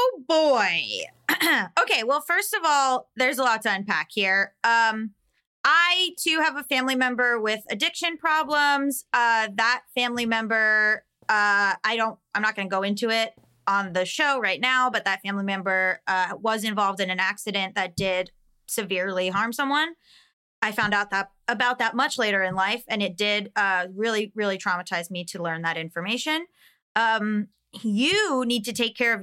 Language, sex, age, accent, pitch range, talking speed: English, female, 20-39, American, 195-265 Hz, 175 wpm